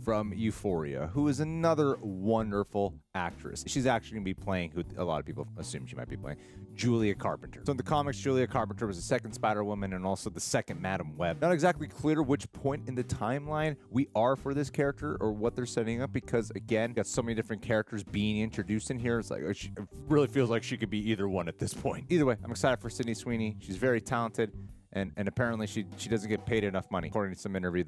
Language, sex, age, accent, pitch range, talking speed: English, male, 30-49, American, 90-120 Hz, 230 wpm